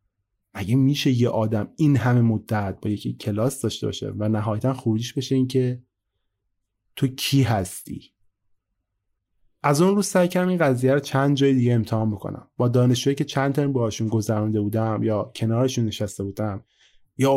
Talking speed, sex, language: 155 wpm, male, Persian